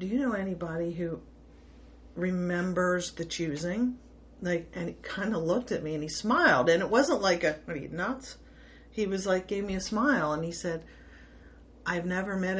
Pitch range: 155-185 Hz